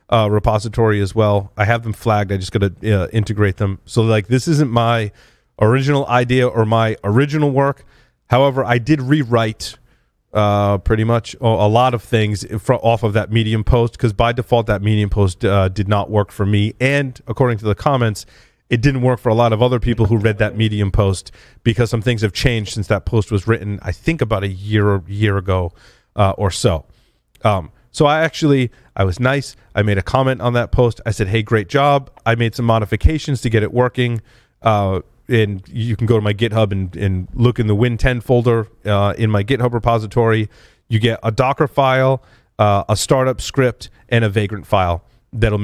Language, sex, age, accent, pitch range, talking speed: English, male, 30-49, American, 105-125 Hz, 205 wpm